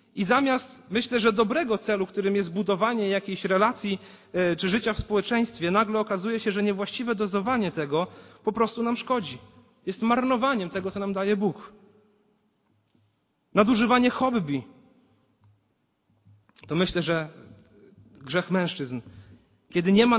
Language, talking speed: Polish, 130 wpm